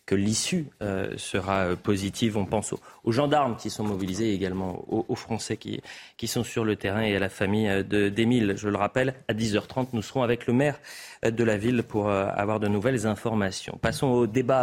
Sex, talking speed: male, 205 wpm